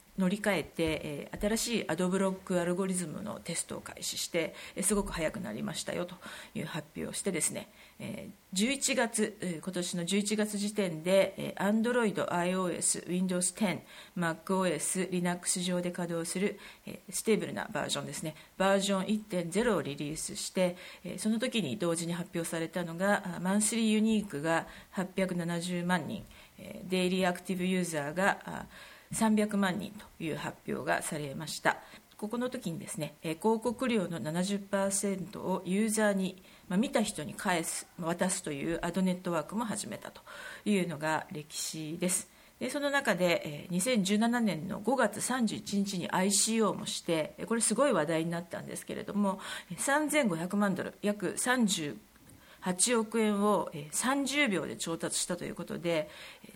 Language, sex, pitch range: English, female, 175-210 Hz